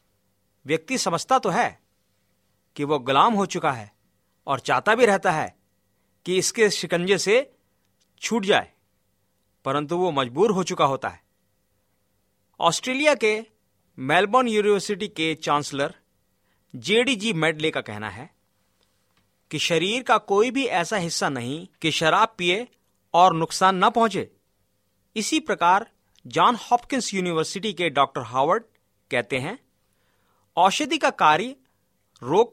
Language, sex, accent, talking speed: Hindi, male, native, 125 wpm